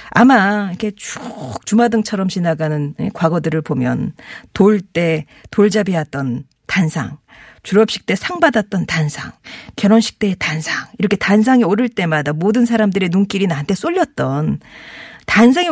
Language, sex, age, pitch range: Korean, female, 40-59, 160-235 Hz